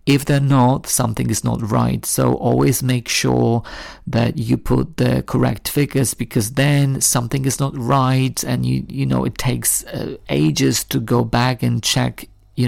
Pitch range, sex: 115-135 Hz, male